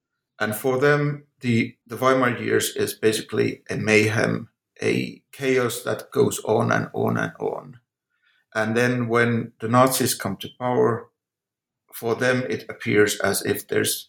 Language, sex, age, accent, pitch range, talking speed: English, male, 50-69, Finnish, 115-130 Hz, 150 wpm